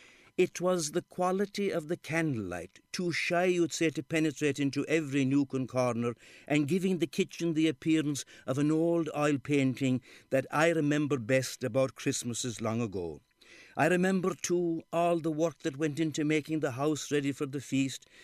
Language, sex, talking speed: English, male, 175 wpm